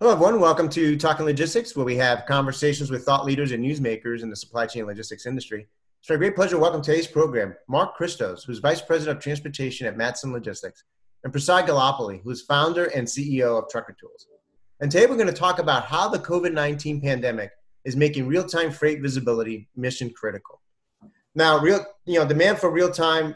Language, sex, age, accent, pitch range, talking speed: English, male, 30-49, American, 125-175 Hz, 190 wpm